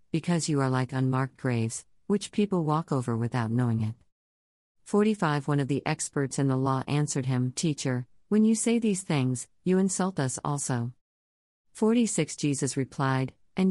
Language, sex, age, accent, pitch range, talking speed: English, female, 50-69, American, 130-165 Hz, 160 wpm